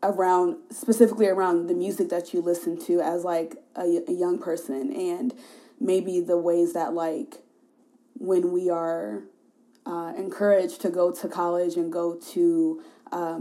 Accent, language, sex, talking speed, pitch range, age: American, English, female, 150 wpm, 175-245 Hz, 20-39